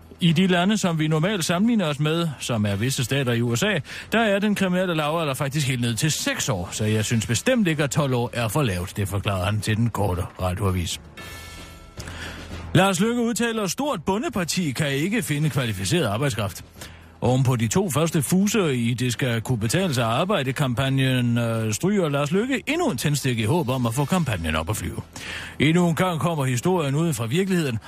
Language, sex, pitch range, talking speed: Danish, male, 110-165 Hz, 195 wpm